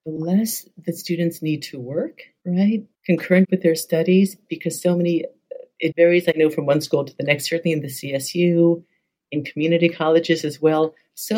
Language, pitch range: English, 155-195 Hz